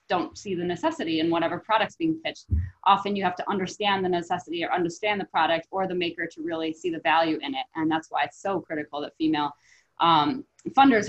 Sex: female